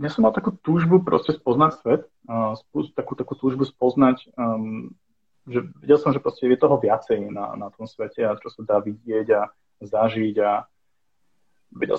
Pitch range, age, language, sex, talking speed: 105-125 Hz, 30-49, Slovak, male, 155 wpm